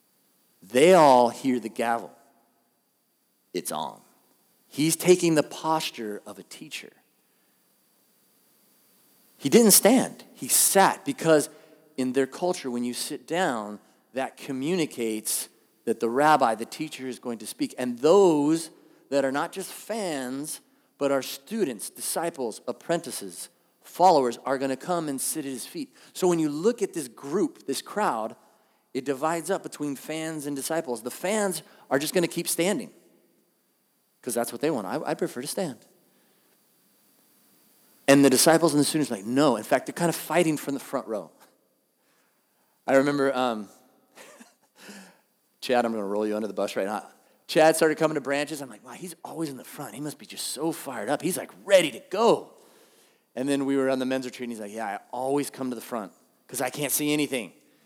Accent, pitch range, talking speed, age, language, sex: American, 125-165 Hz, 180 wpm, 40-59, English, male